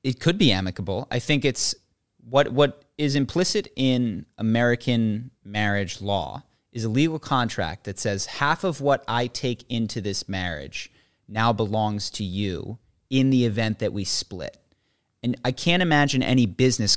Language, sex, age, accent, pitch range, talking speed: English, male, 30-49, American, 100-130 Hz, 160 wpm